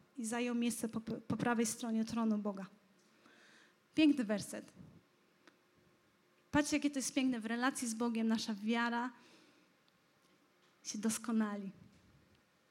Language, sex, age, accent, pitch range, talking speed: Polish, female, 20-39, native, 220-260 Hz, 115 wpm